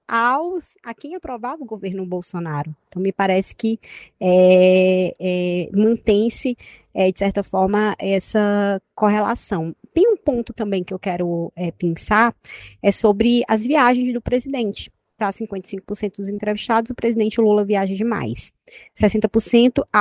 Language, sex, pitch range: Portuguese, female, 195-235 Hz